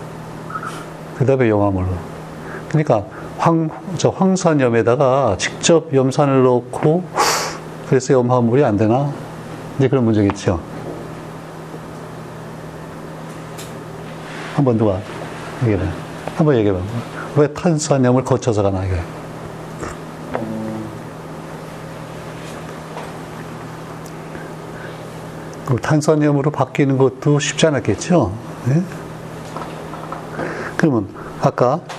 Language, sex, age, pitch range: Korean, male, 40-59, 115-155 Hz